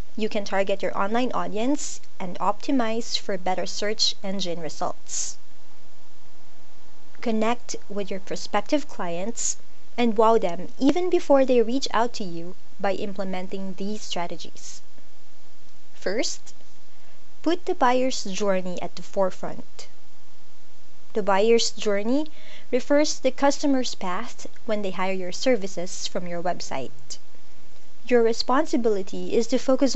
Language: English